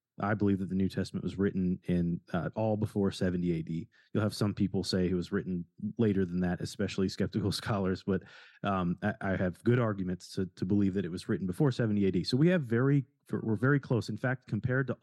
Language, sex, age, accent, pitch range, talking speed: English, male, 30-49, American, 95-115 Hz, 225 wpm